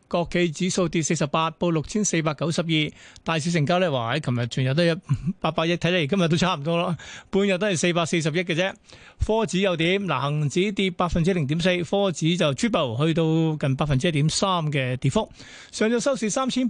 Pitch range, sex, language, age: 160-195 Hz, male, Chinese, 30-49